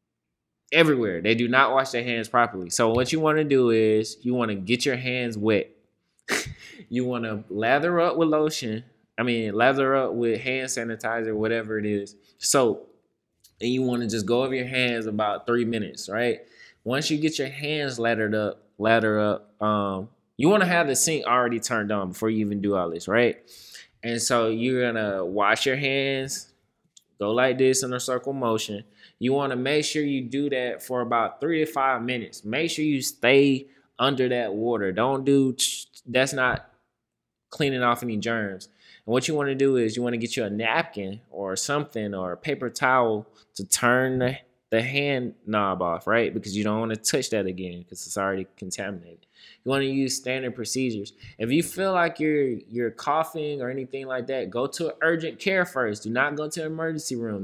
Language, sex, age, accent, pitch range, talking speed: English, male, 20-39, American, 110-135 Hz, 195 wpm